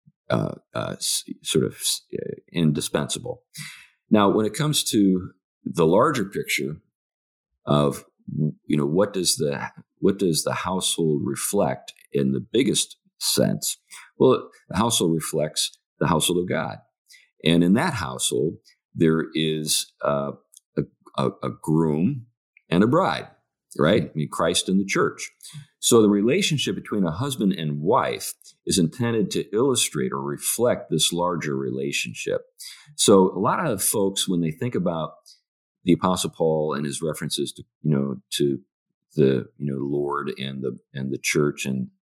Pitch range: 70-100 Hz